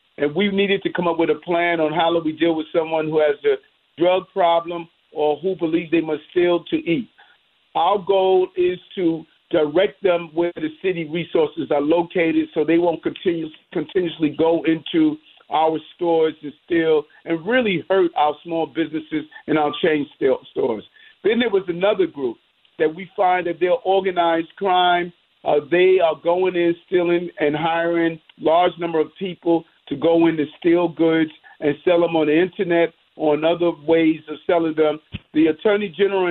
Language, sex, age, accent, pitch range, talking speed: English, male, 50-69, American, 160-185 Hz, 175 wpm